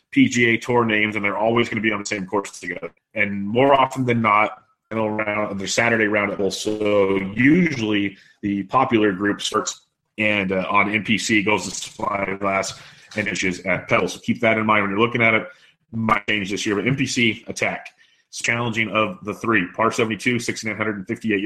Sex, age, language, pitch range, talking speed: male, 30-49, English, 100-120 Hz, 180 wpm